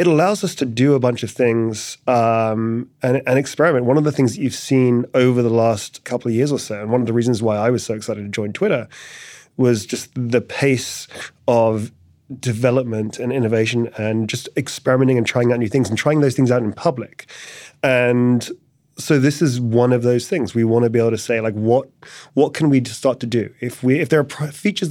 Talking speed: 220 wpm